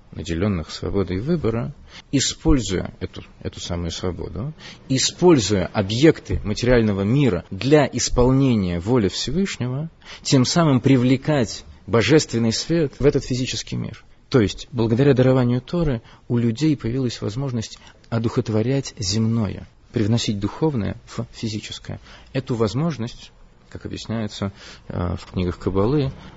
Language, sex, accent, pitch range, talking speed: Russian, male, native, 95-125 Hz, 105 wpm